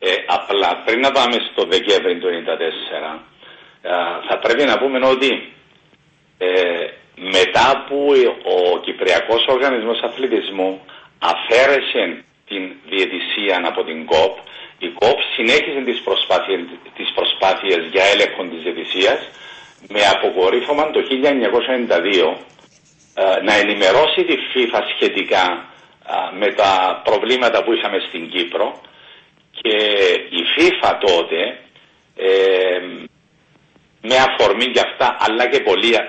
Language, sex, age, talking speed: Greek, male, 50-69, 105 wpm